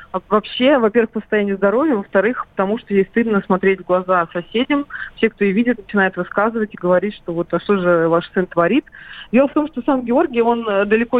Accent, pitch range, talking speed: native, 195-245 Hz, 205 wpm